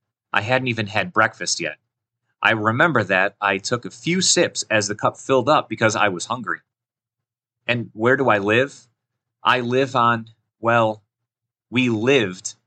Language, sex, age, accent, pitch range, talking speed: English, male, 30-49, American, 105-120 Hz, 160 wpm